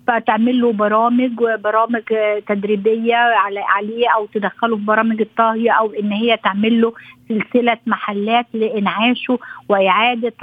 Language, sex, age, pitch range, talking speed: Arabic, female, 50-69, 200-240 Hz, 115 wpm